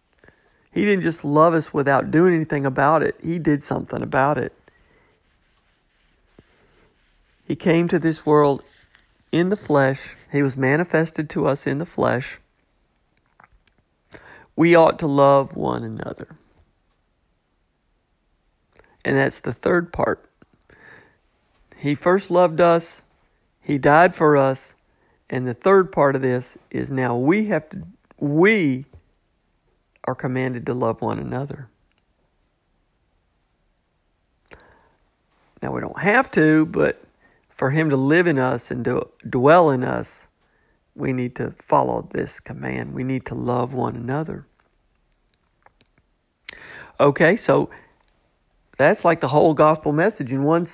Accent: American